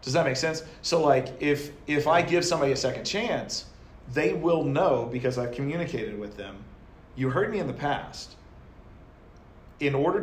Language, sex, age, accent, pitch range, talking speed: English, male, 40-59, American, 105-145 Hz, 175 wpm